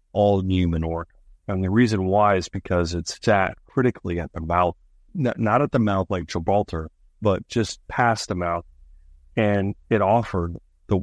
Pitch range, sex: 80-100 Hz, male